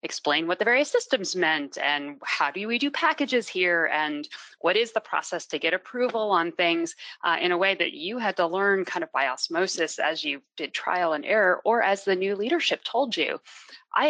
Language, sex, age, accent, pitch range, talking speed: English, female, 30-49, American, 170-255 Hz, 215 wpm